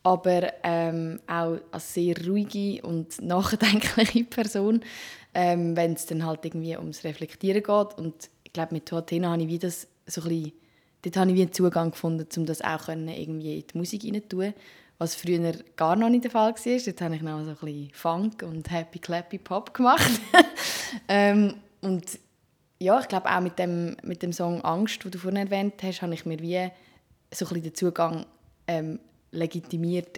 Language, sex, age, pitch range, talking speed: German, female, 20-39, 165-190 Hz, 175 wpm